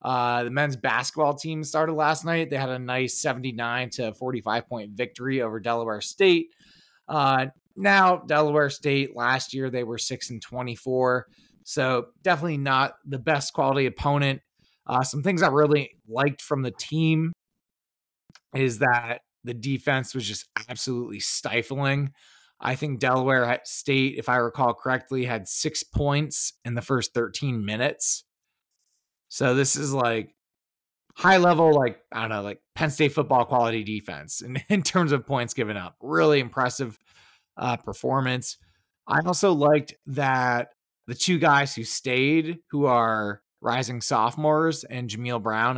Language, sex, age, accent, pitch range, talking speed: English, male, 20-39, American, 120-145 Hz, 150 wpm